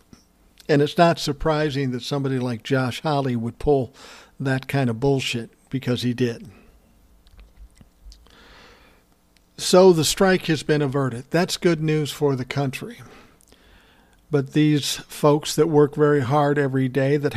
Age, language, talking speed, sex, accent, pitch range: 60-79, English, 140 wpm, male, American, 130-150 Hz